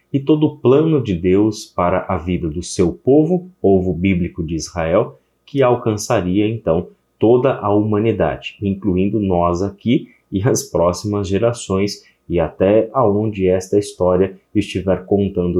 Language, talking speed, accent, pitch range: Portuguese, 140 wpm, Brazilian, 85-110 Hz